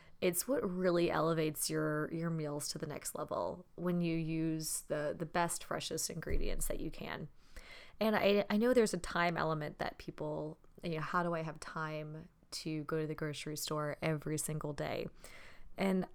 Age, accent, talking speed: 20-39, American, 180 wpm